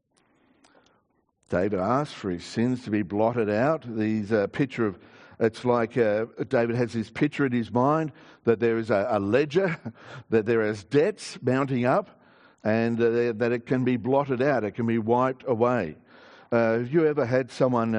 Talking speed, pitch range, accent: 180 wpm, 105-135 Hz, Australian